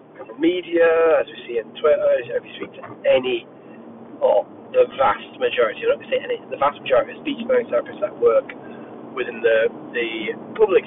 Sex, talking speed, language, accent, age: male, 180 wpm, English, British, 30-49